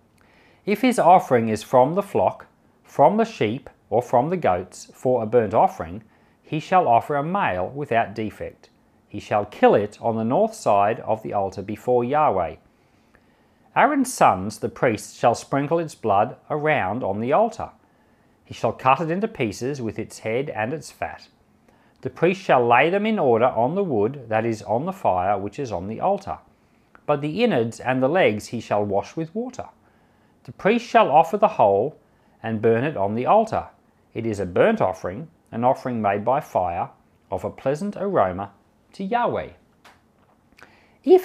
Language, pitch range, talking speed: English, 110-170 Hz, 175 wpm